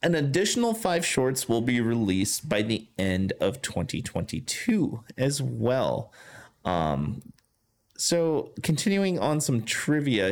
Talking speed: 115 wpm